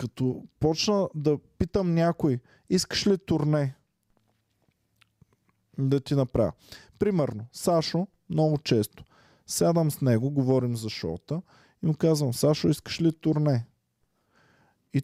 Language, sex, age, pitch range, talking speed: Bulgarian, male, 20-39, 130-165 Hz, 115 wpm